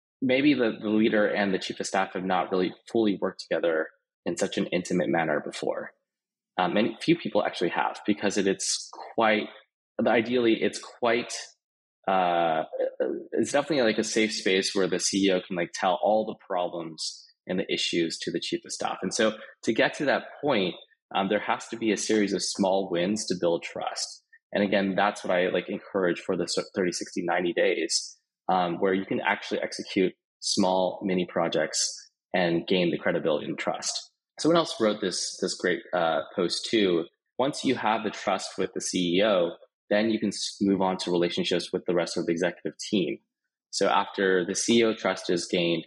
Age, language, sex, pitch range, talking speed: 20-39, English, male, 90-115 Hz, 185 wpm